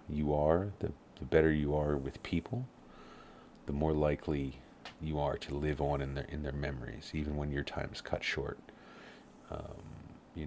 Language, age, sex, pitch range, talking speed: English, 40-59, male, 75-85 Hz, 180 wpm